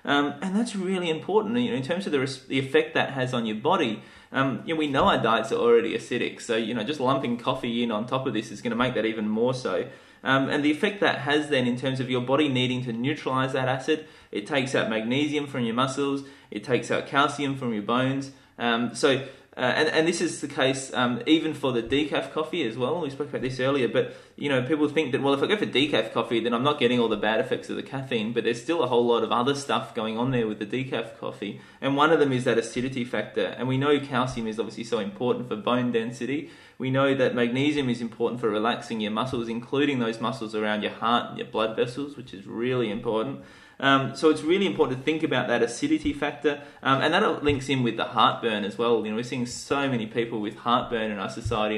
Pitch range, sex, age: 115-145 Hz, male, 20-39